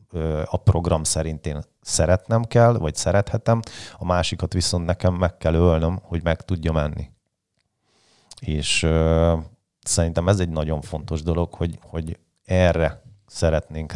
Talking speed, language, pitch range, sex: 135 wpm, Hungarian, 80-95 Hz, male